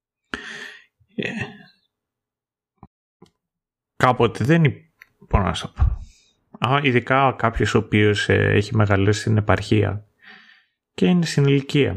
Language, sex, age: Greek, male, 30-49